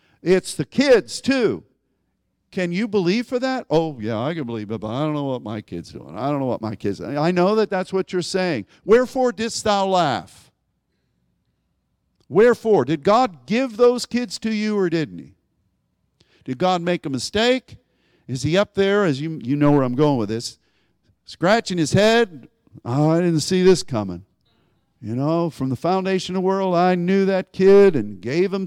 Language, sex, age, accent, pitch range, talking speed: English, male, 50-69, American, 130-195 Hz, 195 wpm